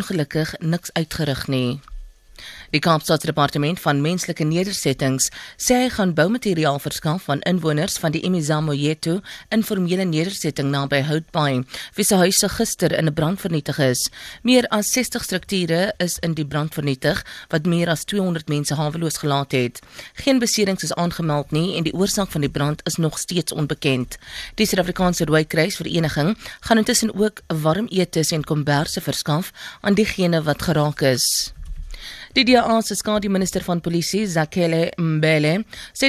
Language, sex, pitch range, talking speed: English, female, 150-190 Hz, 145 wpm